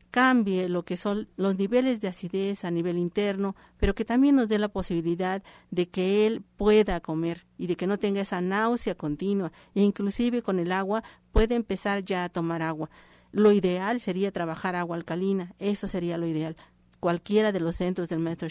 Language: Spanish